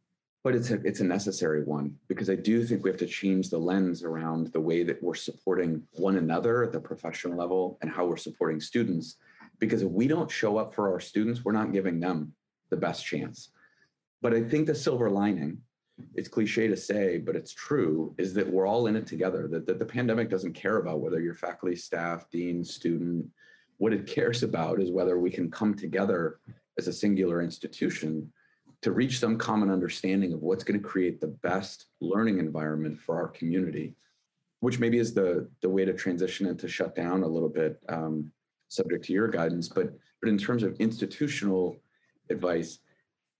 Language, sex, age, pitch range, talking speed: English, male, 30-49, 85-115 Hz, 195 wpm